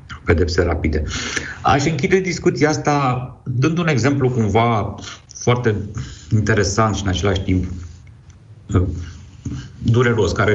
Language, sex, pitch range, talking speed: Romanian, male, 85-115 Hz, 100 wpm